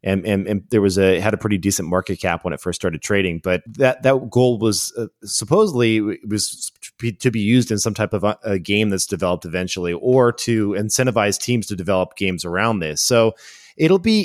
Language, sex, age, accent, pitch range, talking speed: English, male, 30-49, American, 105-125 Hz, 215 wpm